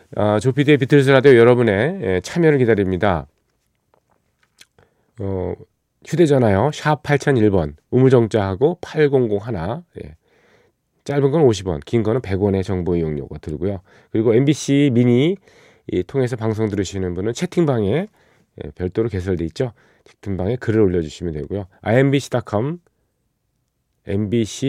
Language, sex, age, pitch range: Korean, male, 40-59, 95-130 Hz